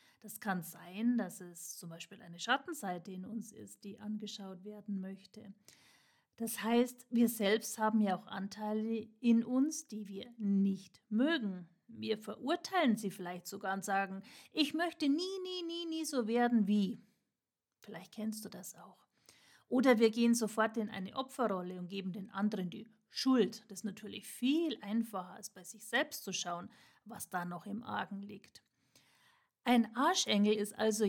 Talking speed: 165 wpm